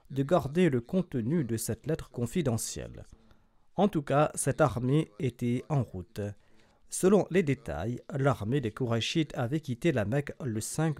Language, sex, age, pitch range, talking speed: French, male, 40-59, 115-160 Hz, 155 wpm